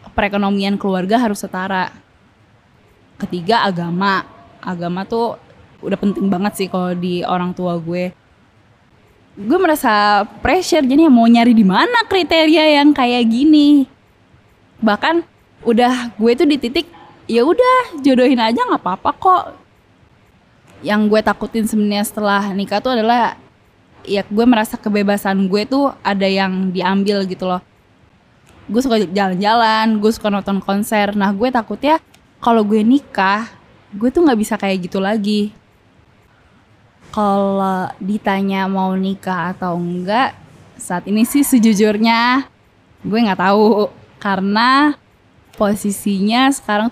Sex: female